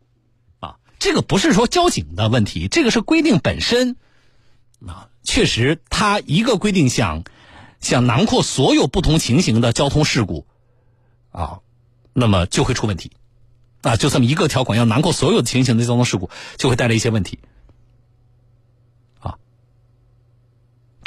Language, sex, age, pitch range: Chinese, male, 50-69, 115-150 Hz